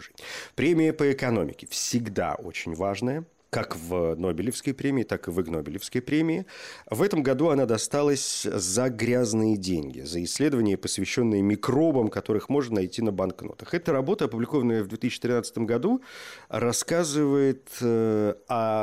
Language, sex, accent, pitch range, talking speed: Russian, male, native, 95-125 Hz, 130 wpm